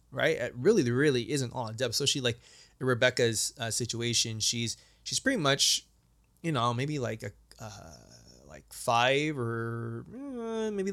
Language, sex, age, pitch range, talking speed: English, male, 20-39, 115-135 Hz, 165 wpm